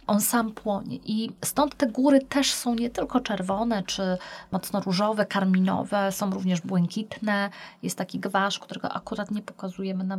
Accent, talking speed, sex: native, 160 wpm, female